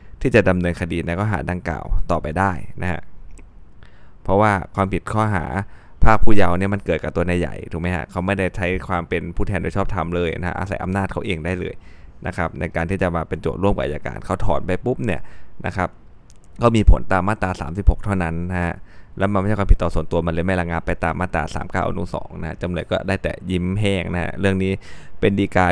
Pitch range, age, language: 85-100 Hz, 20-39, Thai